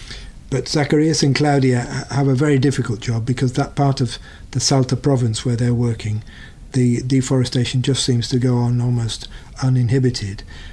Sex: male